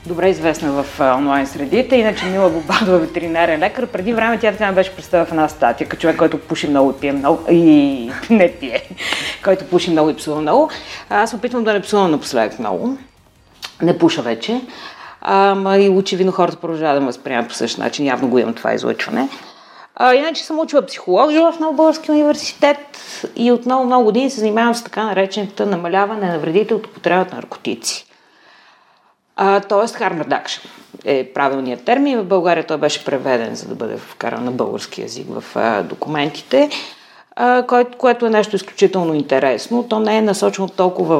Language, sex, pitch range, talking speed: Bulgarian, female, 160-235 Hz, 175 wpm